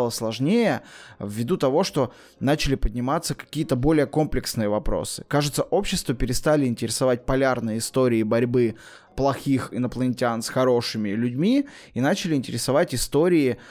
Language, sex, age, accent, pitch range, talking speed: Russian, male, 20-39, native, 120-145 Hz, 115 wpm